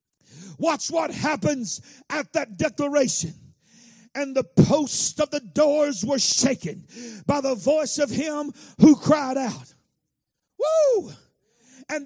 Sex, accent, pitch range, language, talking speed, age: male, American, 250-310 Hz, English, 120 wpm, 50-69